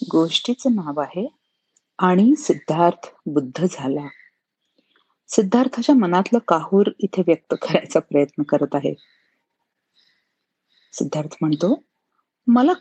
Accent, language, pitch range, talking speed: native, Marathi, 165-235 Hz, 90 wpm